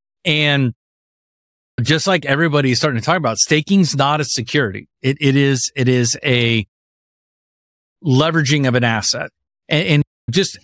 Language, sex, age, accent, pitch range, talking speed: English, male, 40-59, American, 125-165 Hz, 145 wpm